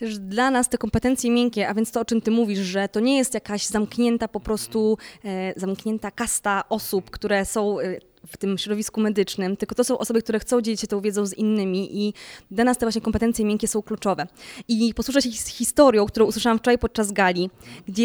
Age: 20-39